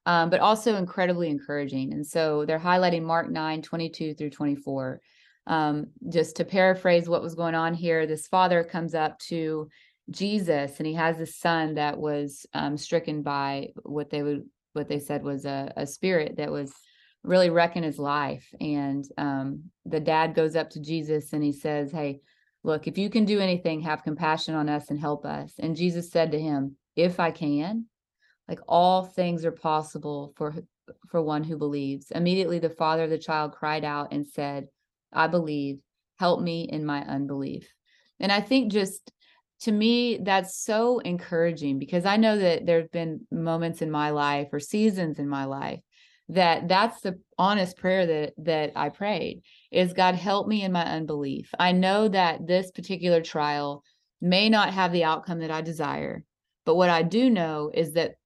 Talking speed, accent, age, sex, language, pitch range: 180 wpm, American, 30-49, female, English, 150-180 Hz